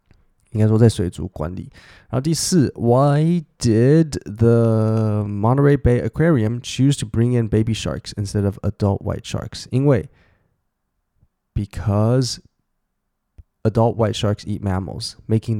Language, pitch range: Chinese, 105-130 Hz